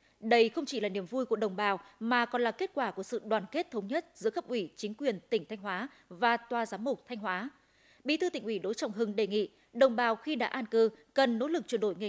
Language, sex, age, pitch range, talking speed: Vietnamese, female, 20-39, 210-265 Hz, 275 wpm